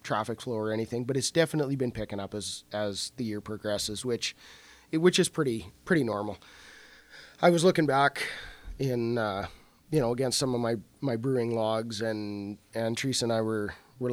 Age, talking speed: 30-49, 185 wpm